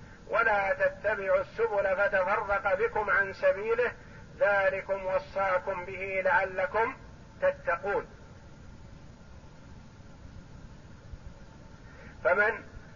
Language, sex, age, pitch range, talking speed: Arabic, male, 50-69, 195-290 Hz, 60 wpm